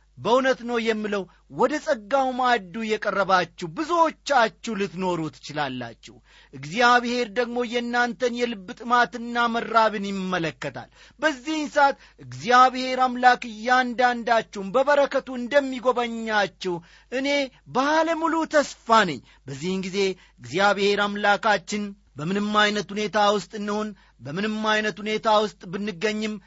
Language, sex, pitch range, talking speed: Amharic, male, 180-240 Hz, 90 wpm